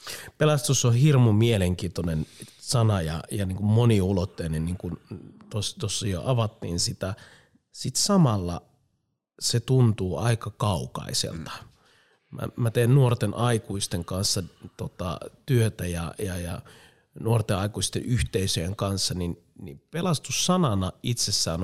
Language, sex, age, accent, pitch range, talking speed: Finnish, male, 30-49, native, 95-130 Hz, 115 wpm